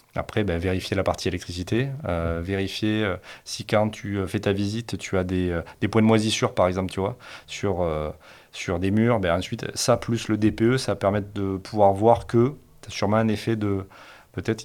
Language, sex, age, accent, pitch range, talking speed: French, male, 30-49, French, 95-115 Hz, 215 wpm